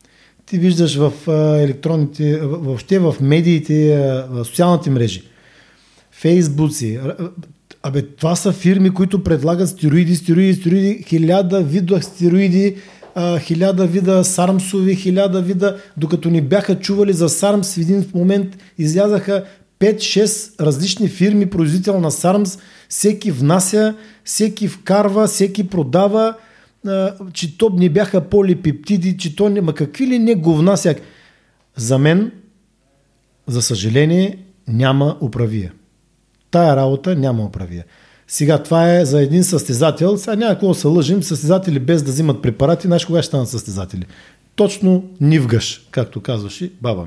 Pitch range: 145-190 Hz